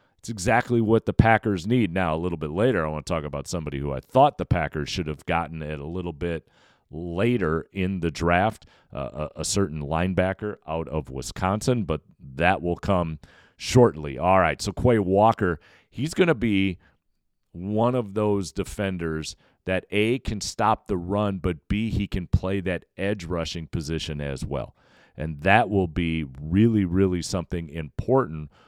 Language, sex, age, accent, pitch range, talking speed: English, male, 40-59, American, 80-105 Hz, 170 wpm